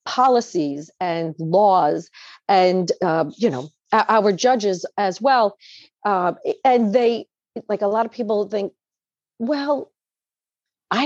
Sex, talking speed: female, 120 wpm